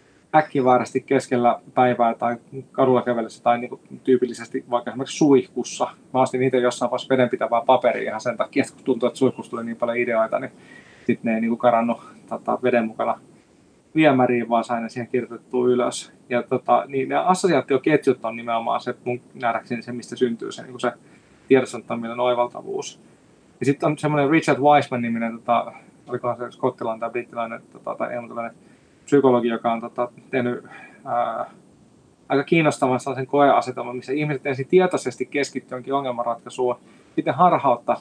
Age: 20-39